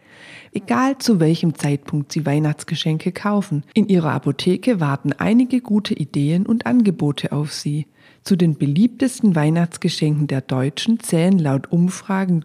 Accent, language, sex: German, German, female